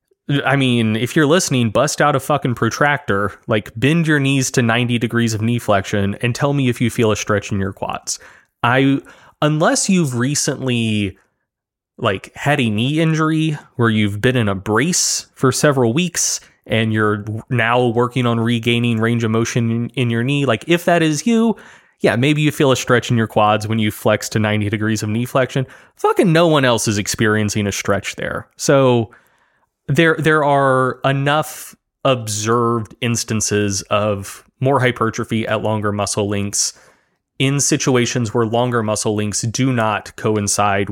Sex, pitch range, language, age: male, 105-140 Hz, English, 20-39